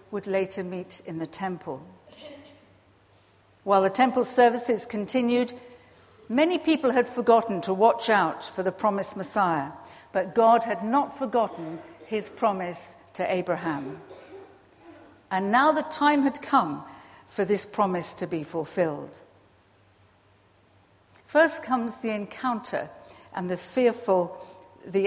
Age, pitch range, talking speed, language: 60-79, 175-230 Hz, 120 wpm, English